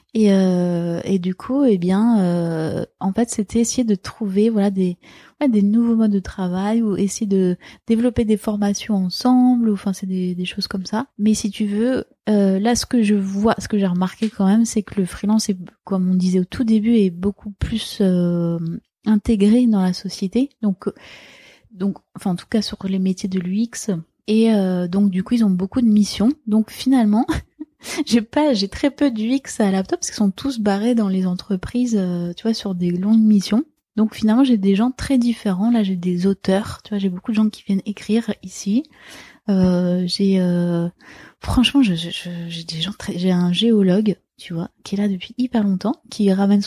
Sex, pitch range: female, 190-225 Hz